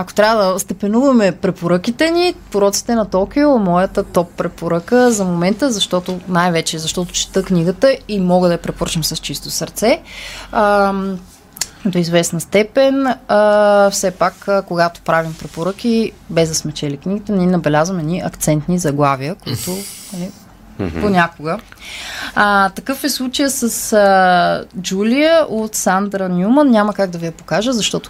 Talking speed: 145 wpm